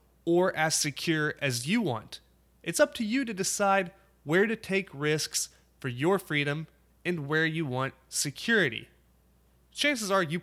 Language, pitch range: English, 130-185 Hz